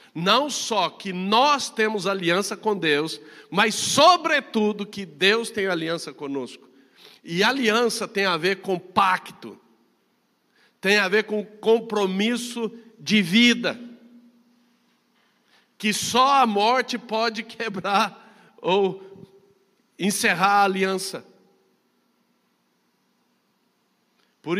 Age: 60-79